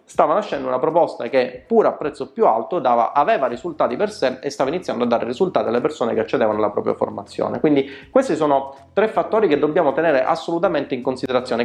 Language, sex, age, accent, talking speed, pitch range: Italian, male, 30-49, native, 200 wpm, 125-160 Hz